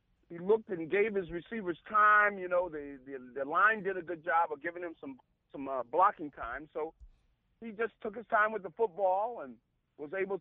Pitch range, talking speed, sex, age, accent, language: 155-215 Hz, 215 wpm, male, 50-69, American, English